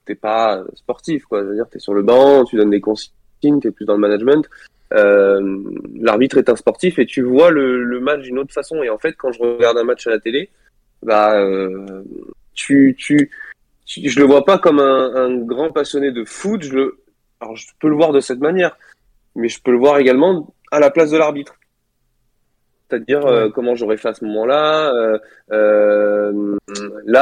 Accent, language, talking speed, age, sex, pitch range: French, French, 205 wpm, 20-39, male, 110-150 Hz